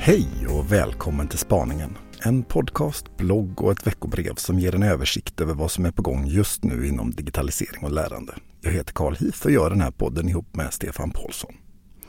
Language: Swedish